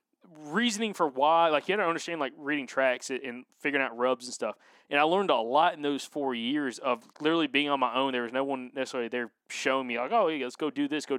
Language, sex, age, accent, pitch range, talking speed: English, male, 20-39, American, 125-150 Hz, 245 wpm